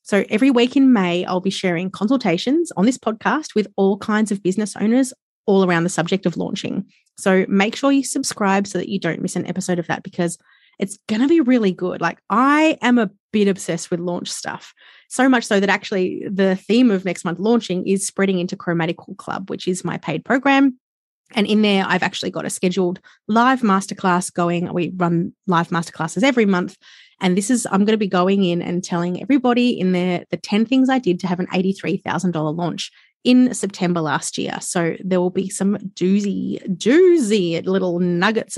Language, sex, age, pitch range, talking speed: English, female, 30-49, 180-230 Hz, 200 wpm